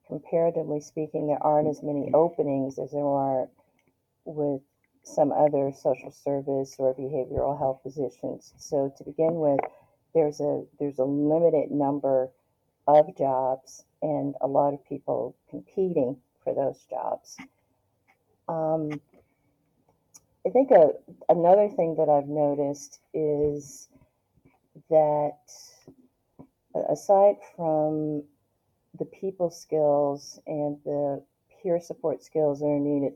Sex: female